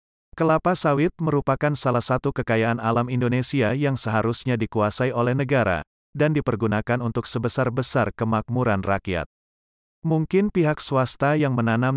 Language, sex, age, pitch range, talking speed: Indonesian, male, 30-49, 110-135 Hz, 120 wpm